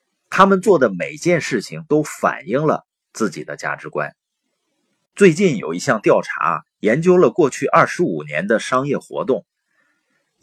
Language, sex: Chinese, male